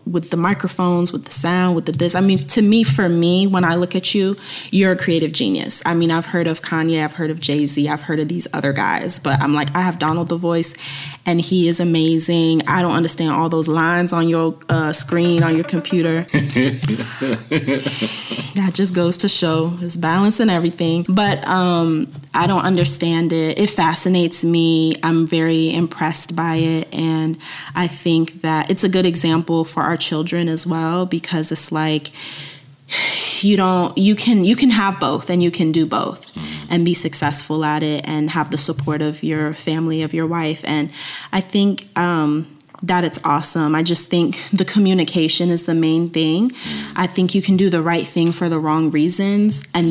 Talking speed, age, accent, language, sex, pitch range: 195 wpm, 20-39, American, English, female, 155-175 Hz